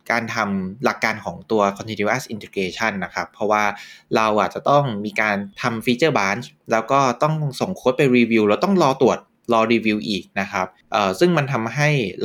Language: Thai